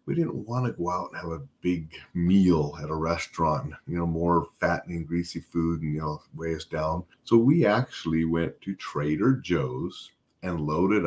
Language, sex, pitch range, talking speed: English, male, 80-105 Hz, 190 wpm